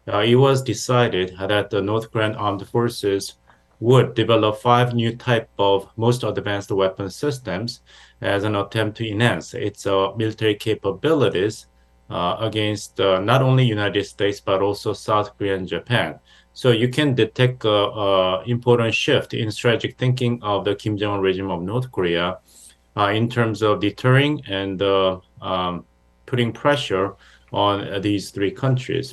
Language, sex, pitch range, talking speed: English, male, 100-120 Hz, 155 wpm